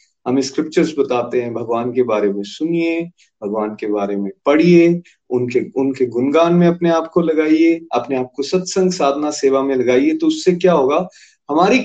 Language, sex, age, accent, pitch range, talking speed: Hindi, male, 30-49, native, 135-195 Hz, 175 wpm